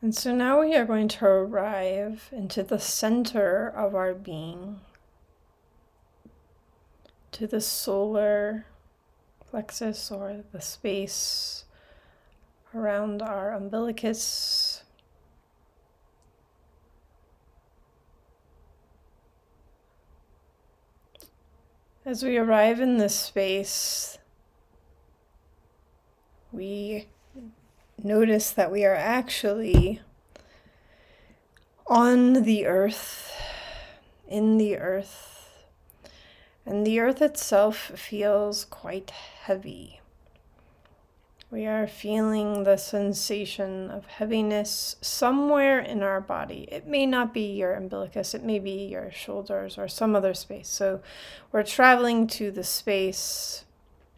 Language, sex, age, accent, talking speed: English, female, 30-49, American, 90 wpm